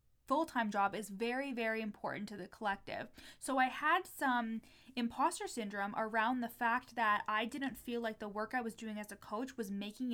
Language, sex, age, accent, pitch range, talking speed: English, female, 20-39, American, 210-255 Hz, 200 wpm